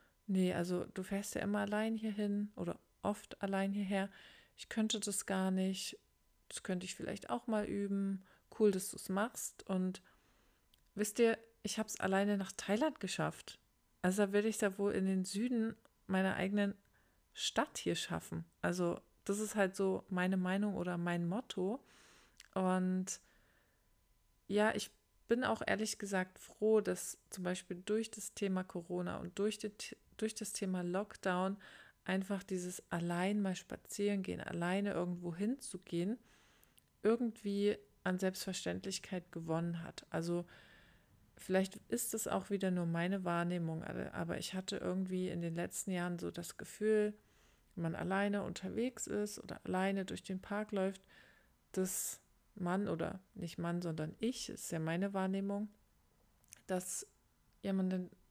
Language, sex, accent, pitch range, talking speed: German, female, German, 185-210 Hz, 145 wpm